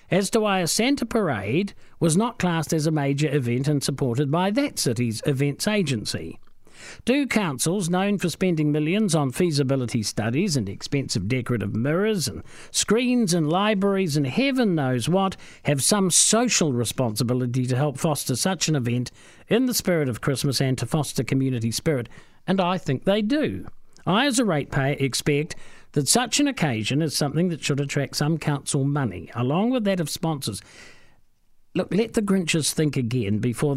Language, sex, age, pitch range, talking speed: English, male, 50-69, 125-185 Hz, 170 wpm